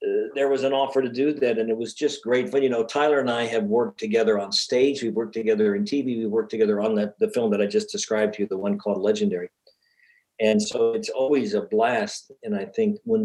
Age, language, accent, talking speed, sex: 50-69, English, American, 250 wpm, male